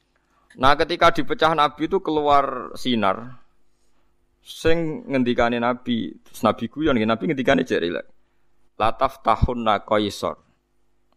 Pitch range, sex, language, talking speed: 90-120 Hz, male, Indonesian, 115 wpm